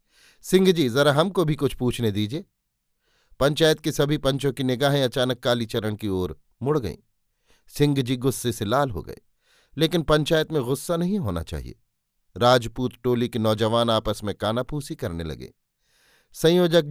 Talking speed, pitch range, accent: 155 wpm, 125-160 Hz, native